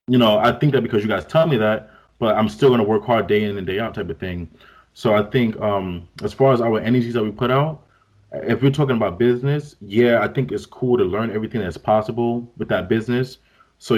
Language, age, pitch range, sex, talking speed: English, 20-39, 105-130 Hz, male, 250 wpm